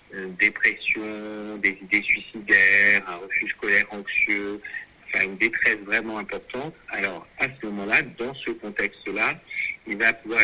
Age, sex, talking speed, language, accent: 50-69, male, 140 wpm, French, French